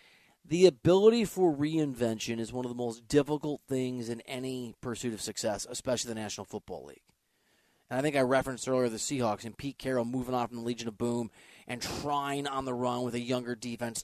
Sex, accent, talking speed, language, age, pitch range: male, American, 205 wpm, English, 30-49, 120-170 Hz